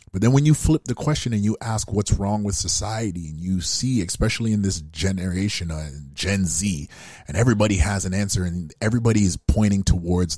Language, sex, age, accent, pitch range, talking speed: English, male, 30-49, American, 90-115 Hz, 195 wpm